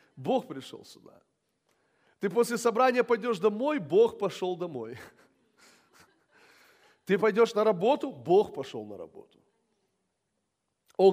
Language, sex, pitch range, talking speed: Russian, male, 205-280 Hz, 110 wpm